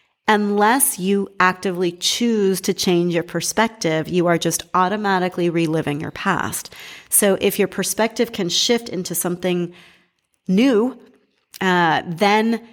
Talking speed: 125 wpm